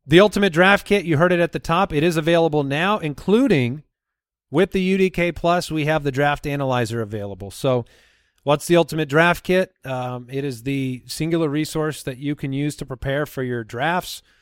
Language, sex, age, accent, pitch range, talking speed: English, male, 40-59, American, 130-155 Hz, 190 wpm